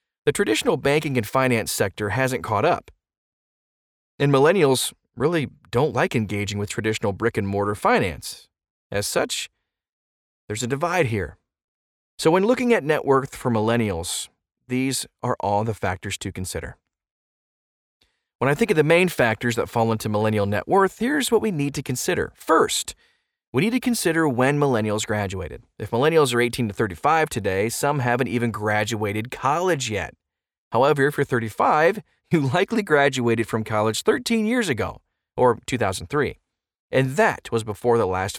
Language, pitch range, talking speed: English, 105-140 Hz, 160 wpm